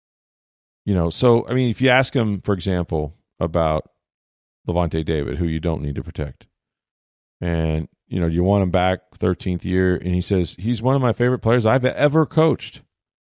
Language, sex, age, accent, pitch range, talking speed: English, male, 40-59, American, 85-120 Hz, 185 wpm